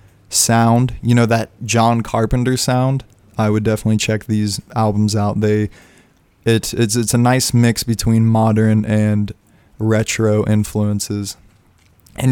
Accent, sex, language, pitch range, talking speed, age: American, male, English, 105-115 Hz, 130 wpm, 20-39